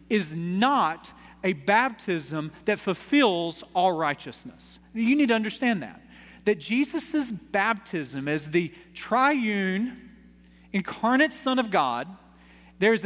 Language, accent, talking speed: English, American, 110 wpm